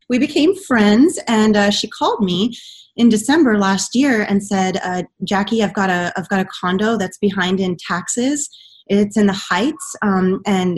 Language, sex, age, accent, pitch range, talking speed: English, female, 20-39, American, 195-250 Hz, 185 wpm